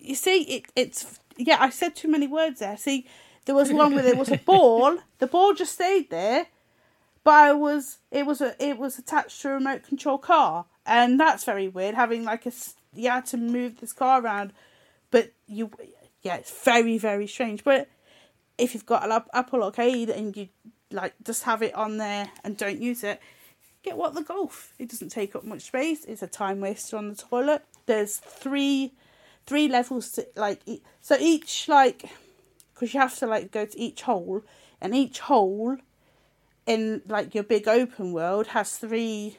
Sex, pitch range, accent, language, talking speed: female, 225-295 Hz, British, English, 190 wpm